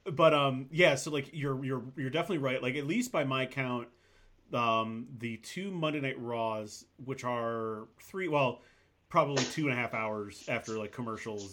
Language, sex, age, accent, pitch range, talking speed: English, male, 30-49, American, 115-145 Hz, 180 wpm